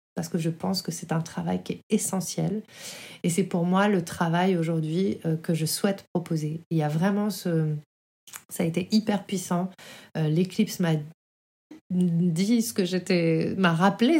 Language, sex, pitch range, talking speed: French, female, 165-200 Hz, 170 wpm